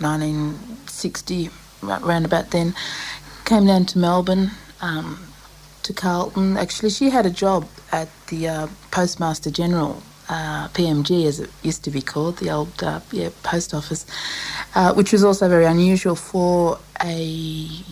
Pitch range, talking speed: 155-185 Hz, 145 wpm